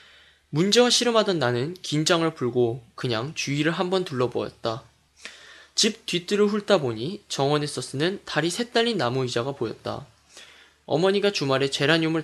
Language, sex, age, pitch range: Korean, male, 20-39, 125-190 Hz